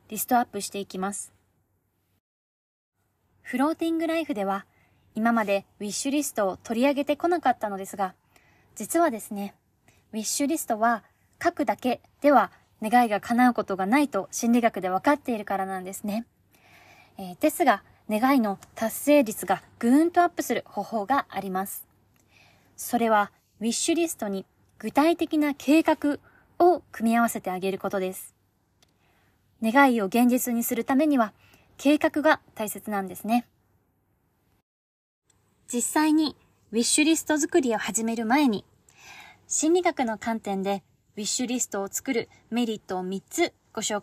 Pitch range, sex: 195-280 Hz, female